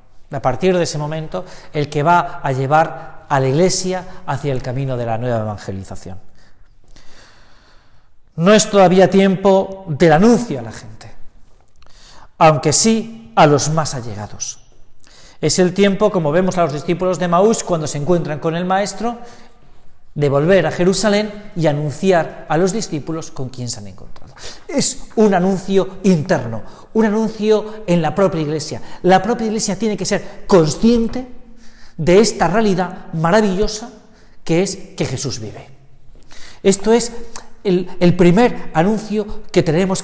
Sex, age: male, 40-59